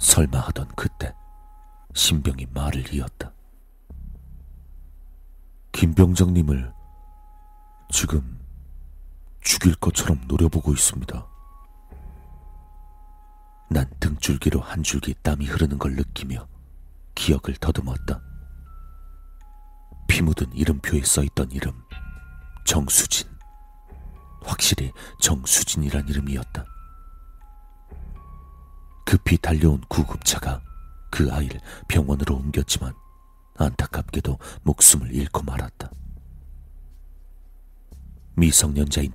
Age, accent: 40-59, native